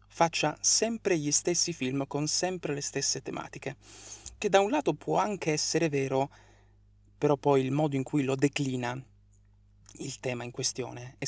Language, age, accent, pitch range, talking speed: Italian, 20-39, native, 100-150 Hz, 165 wpm